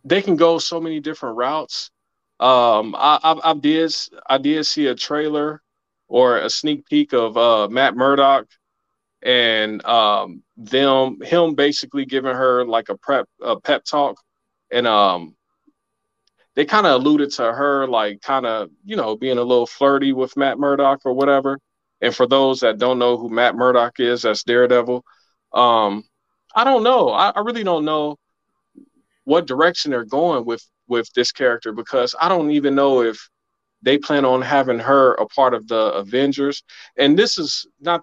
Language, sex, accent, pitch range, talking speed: English, male, American, 125-150 Hz, 170 wpm